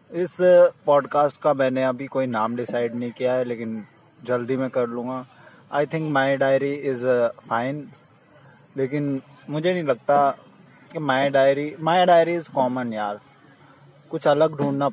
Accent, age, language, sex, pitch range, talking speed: Indian, 20-39, English, male, 130-155 Hz, 150 wpm